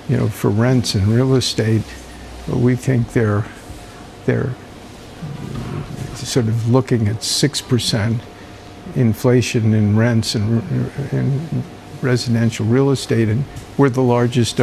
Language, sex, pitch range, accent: English, male, 115-135 Hz, American